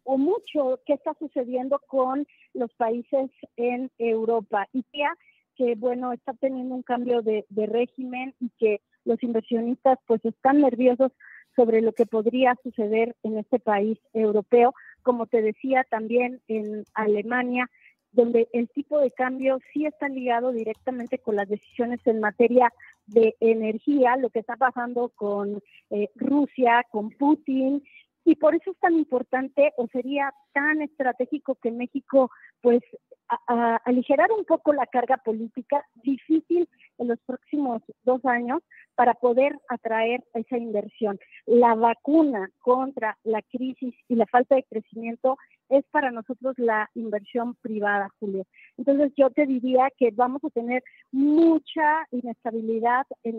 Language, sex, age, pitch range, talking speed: Spanish, female, 40-59, 230-270 Hz, 140 wpm